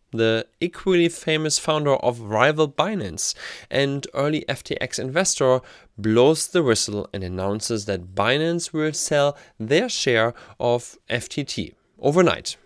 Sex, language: male, English